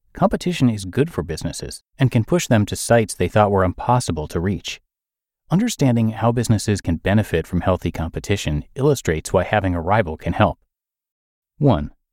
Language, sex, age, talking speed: English, male, 30-49, 165 wpm